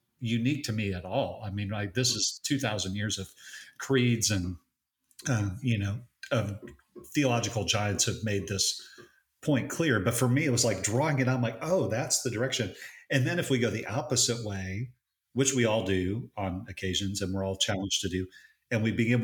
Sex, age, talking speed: male, 40-59, 200 wpm